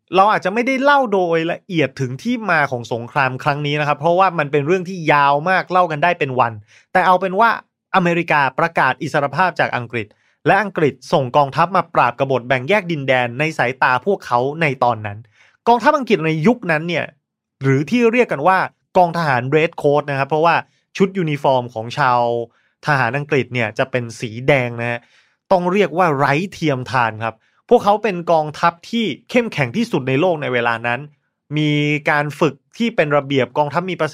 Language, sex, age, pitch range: Thai, male, 20-39, 125-180 Hz